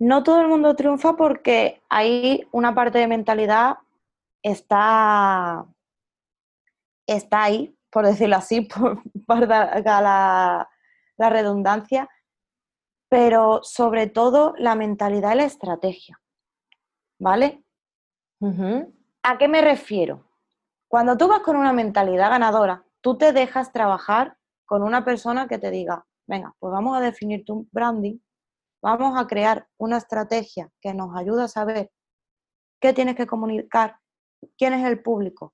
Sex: female